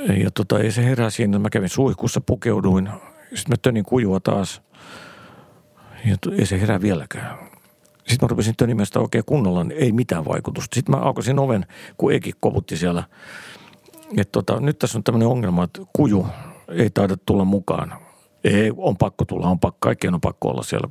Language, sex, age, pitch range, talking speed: Finnish, male, 50-69, 95-125 Hz, 175 wpm